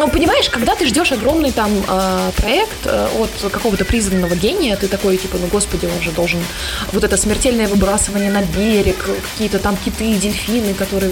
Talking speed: 160 wpm